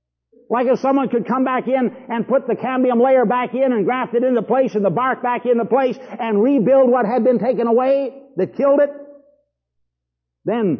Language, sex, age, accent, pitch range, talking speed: English, male, 60-79, American, 185-250 Hz, 200 wpm